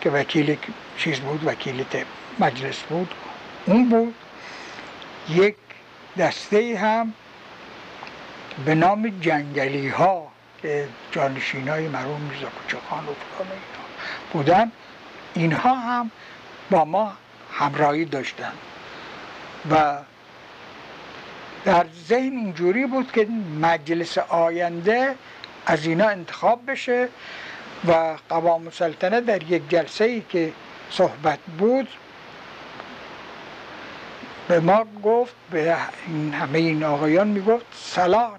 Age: 60-79